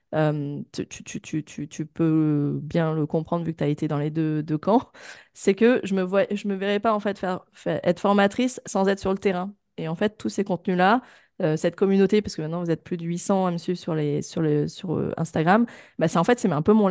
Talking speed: 240 wpm